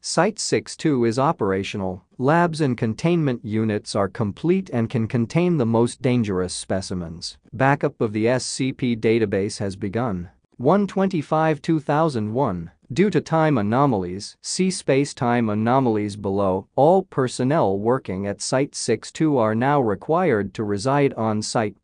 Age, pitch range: 40-59, 105-145 Hz